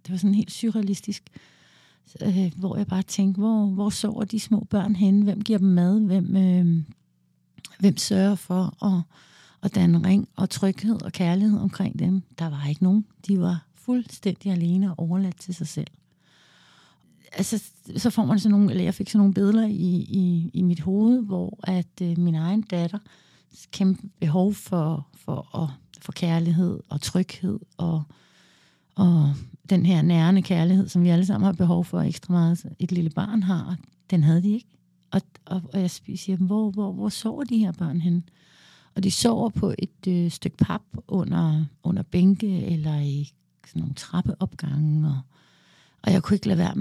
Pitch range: 170-200 Hz